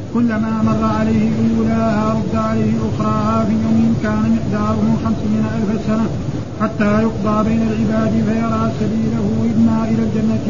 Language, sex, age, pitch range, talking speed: Arabic, male, 50-69, 110-115 Hz, 130 wpm